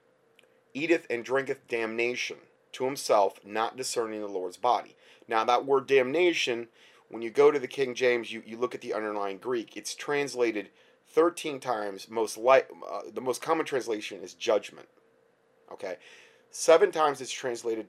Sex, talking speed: male, 160 wpm